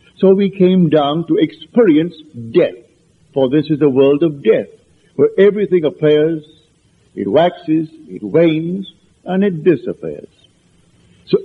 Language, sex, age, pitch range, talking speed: English, male, 60-79, 145-190 Hz, 130 wpm